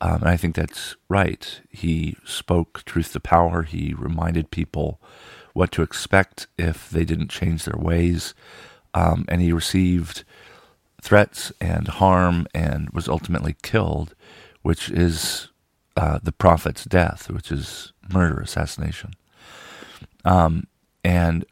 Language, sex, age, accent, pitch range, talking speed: English, male, 40-59, American, 80-90 Hz, 130 wpm